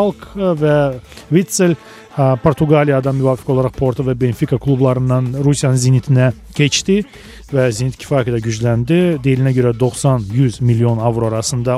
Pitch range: 125-160 Hz